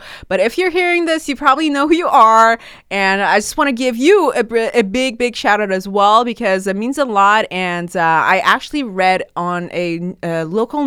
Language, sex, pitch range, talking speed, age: English, female, 180-250 Hz, 220 wpm, 20-39